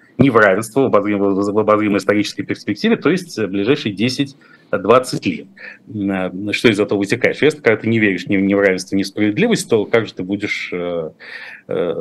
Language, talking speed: Russian, 140 wpm